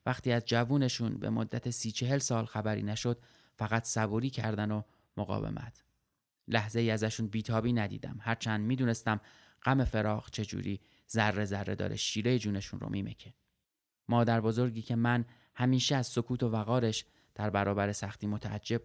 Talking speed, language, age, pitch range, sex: 145 wpm, Persian, 30-49, 105-120 Hz, male